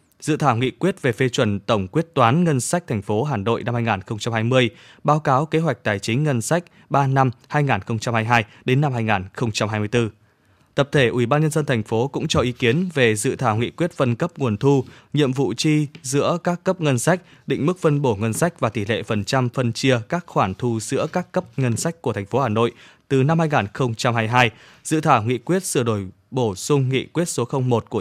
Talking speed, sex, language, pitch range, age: 230 wpm, male, Vietnamese, 115-150 Hz, 20-39